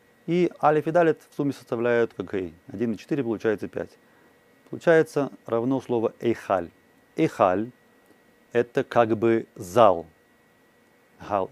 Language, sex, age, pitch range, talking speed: Russian, male, 30-49, 110-135 Hz, 130 wpm